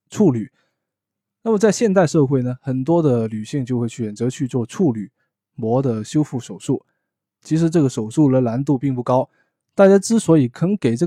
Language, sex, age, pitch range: Chinese, male, 20-39, 120-160 Hz